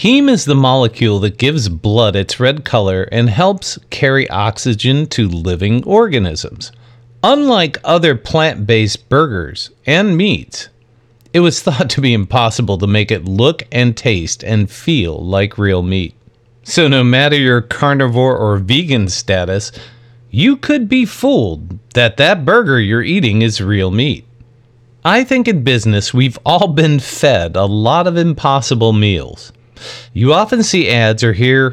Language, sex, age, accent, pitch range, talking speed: English, male, 40-59, American, 110-145 Hz, 150 wpm